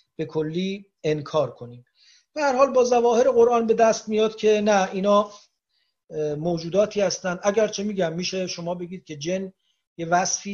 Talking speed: 160 wpm